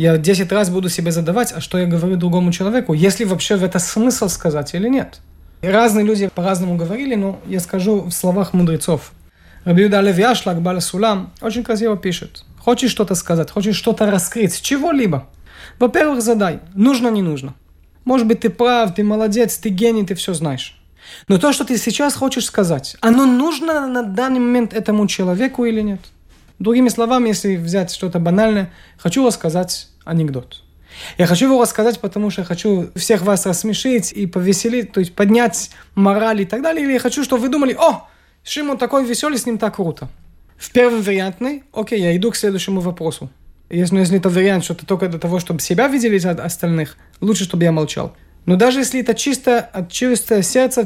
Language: Russian